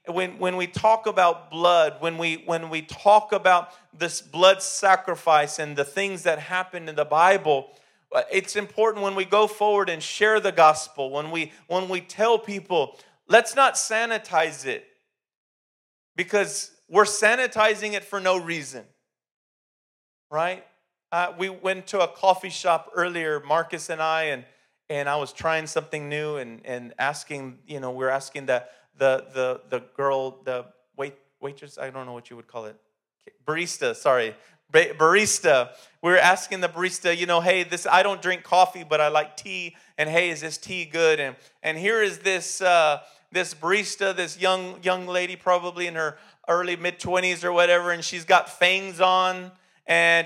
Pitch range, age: 155-195 Hz, 40-59